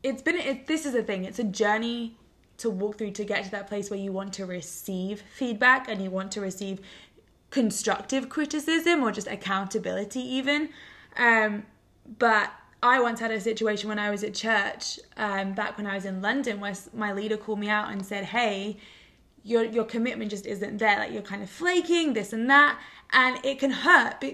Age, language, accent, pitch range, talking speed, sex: 20-39, English, British, 205-240 Hz, 200 wpm, female